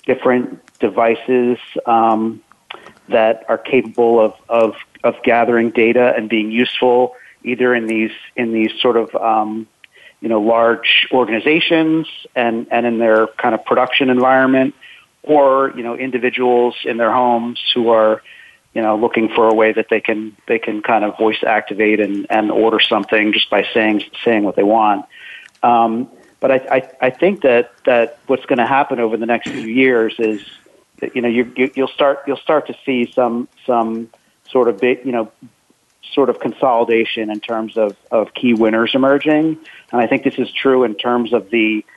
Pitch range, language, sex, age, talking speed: 115-130 Hz, English, male, 40-59, 175 wpm